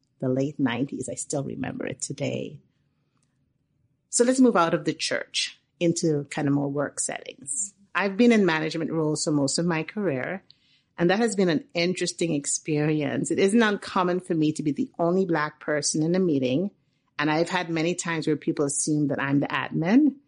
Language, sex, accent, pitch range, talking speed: English, female, American, 140-185 Hz, 190 wpm